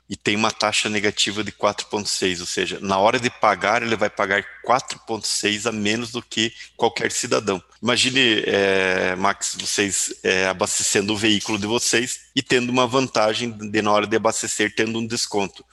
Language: Portuguese